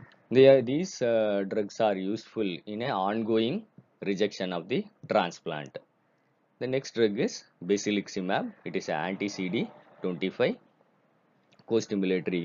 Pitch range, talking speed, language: 95-110 Hz, 110 wpm, Tamil